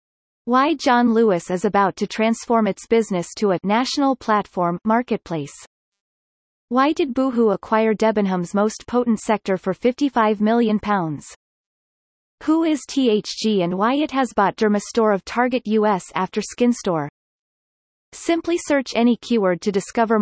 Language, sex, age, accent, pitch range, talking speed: English, female, 30-49, American, 190-235 Hz, 135 wpm